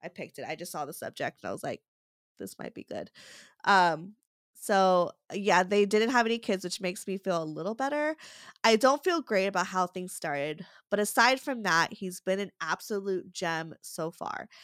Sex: female